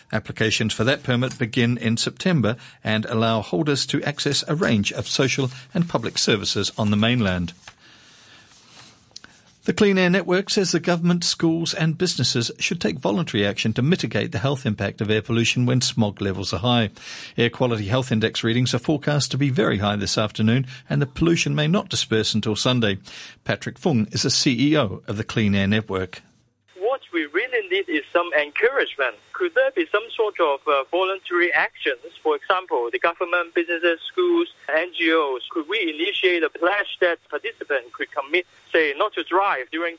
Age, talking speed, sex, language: 50-69, 170 wpm, male, English